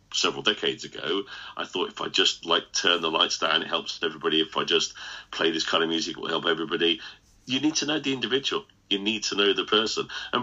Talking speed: 230 wpm